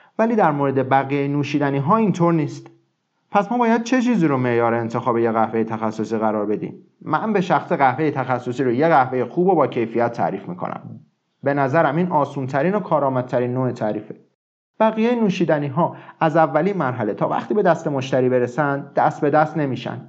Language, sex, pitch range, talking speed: Persian, male, 125-175 Hz, 170 wpm